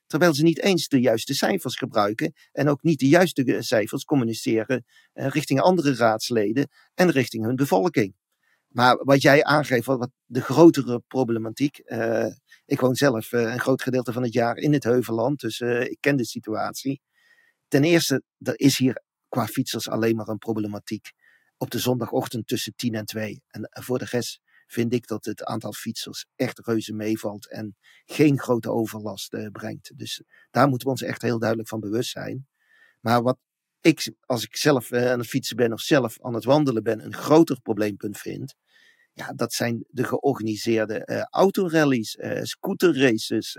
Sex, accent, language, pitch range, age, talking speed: male, Dutch, Dutch, 115-140 Hz, 40-59, 180 wpm